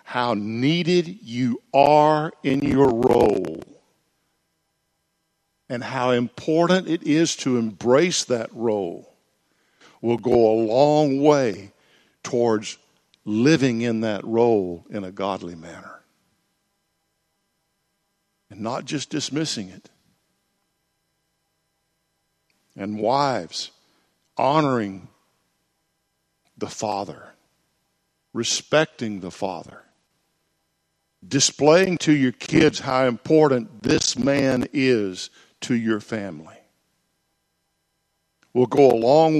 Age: 50-69